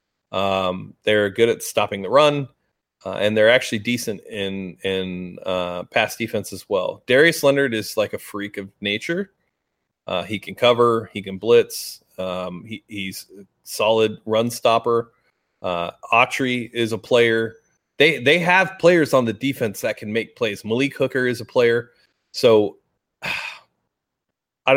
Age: 30-49